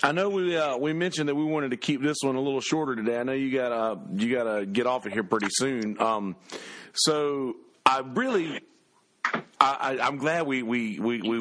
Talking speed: 215 wpm